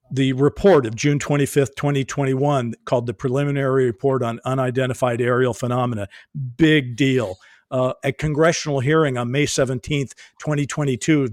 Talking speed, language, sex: 125 wpm, English, male